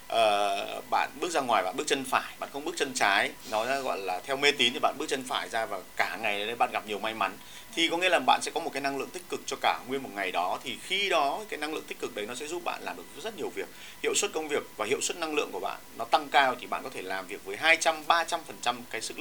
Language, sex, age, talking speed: Vietnamese, male, 30-49, 305 wpm